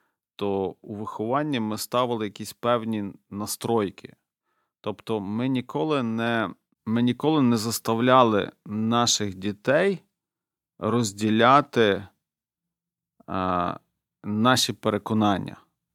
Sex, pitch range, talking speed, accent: male, 100-120 Hz, 85 wpm, native